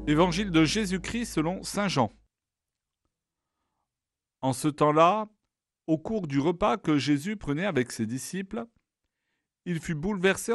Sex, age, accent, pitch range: male, 50-69, French, 120-175 Hz